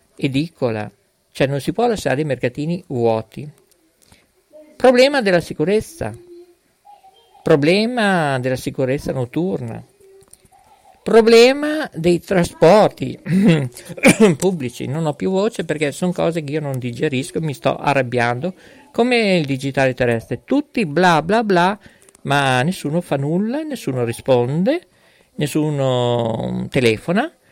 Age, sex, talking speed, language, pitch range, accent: 50-69, male, 110 wpm, Italian, 130-210 Hz, native